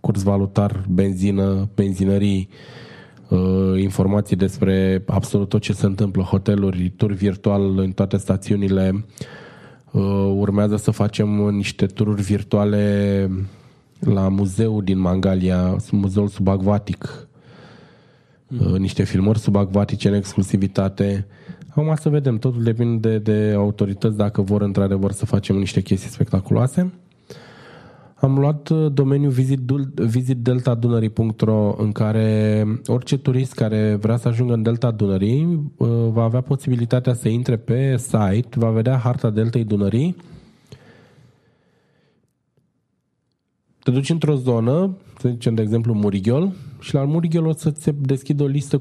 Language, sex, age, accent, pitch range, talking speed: Romanian, male, 20-39, native, 100-130 Hz, 120 wpm